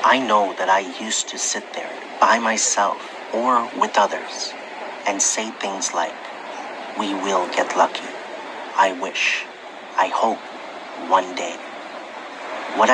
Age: 40-59